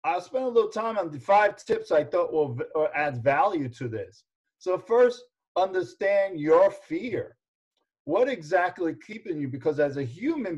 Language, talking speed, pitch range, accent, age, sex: English, 165 wpm, 135-175 Hz, American, 50-69, male